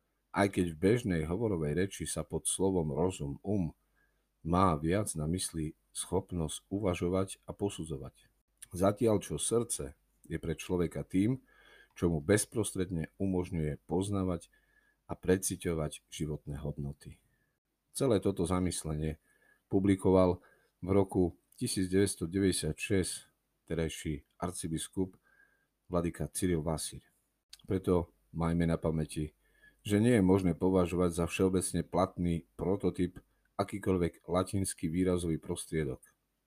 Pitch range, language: 80-95 Hz, Slovak